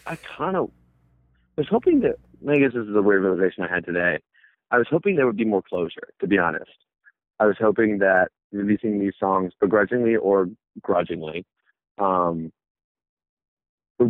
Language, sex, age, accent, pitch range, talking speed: English, male, 30-49, American, 90-105 Hz, 165 wpm